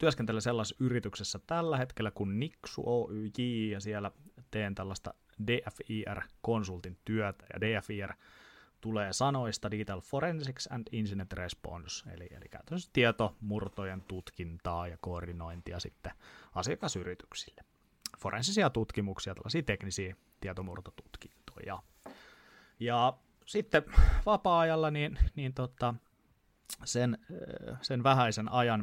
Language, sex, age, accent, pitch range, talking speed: Finnish, male, 30-49, native, 95-115 Hz, 100 wpm